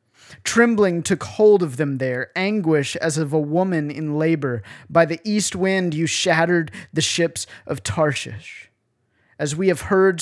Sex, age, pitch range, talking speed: male, 30-49, 120-165 Hz, 160 wpm